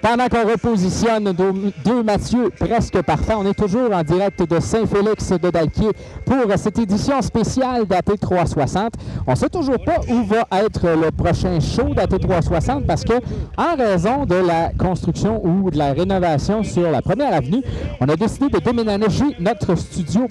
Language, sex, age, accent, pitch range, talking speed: French, male, 50-69, Canadian, 165-225 Hz, 155 wpm